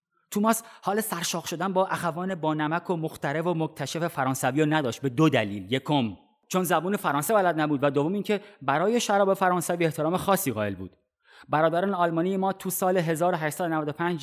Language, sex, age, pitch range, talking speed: Persian, male, 30-49, 145-185 Hz, 165 wpm